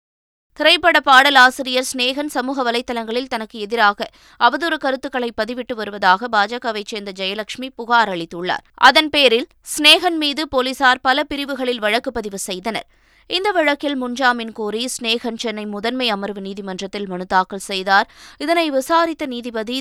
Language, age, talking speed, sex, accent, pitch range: Tamil, 20-39, 125 wpm, female, native, 195-255 Hz